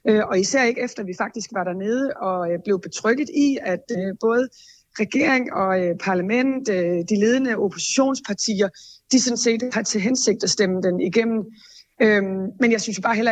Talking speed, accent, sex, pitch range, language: 165 wpm, native, female, 195-240 Hz, Danish